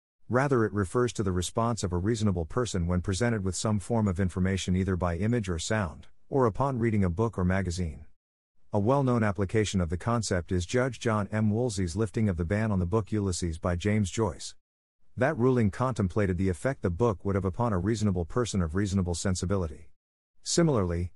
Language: English